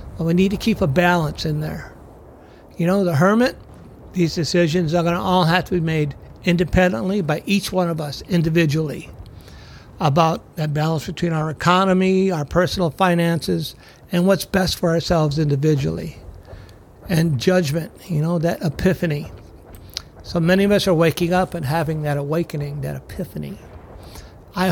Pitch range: 150-185 Hz